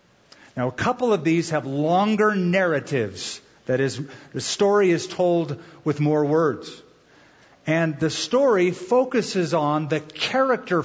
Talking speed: 135 wpm